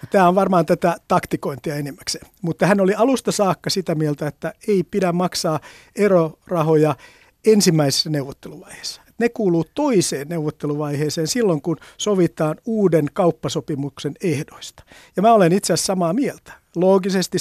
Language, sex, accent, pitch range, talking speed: Finnish, male, native, 150-190 Hz, 130 wpm